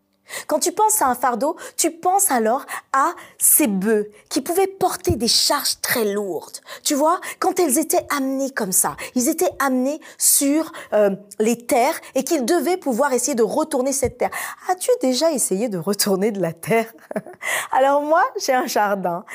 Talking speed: 175 wpm